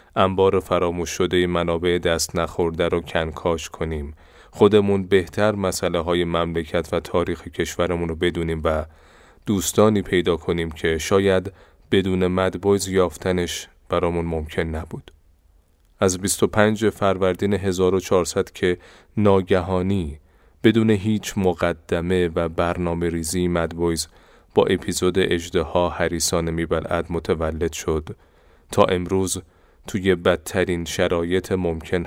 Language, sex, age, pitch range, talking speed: Persian, male, 30-49, 85-95 Hz, 110 wpm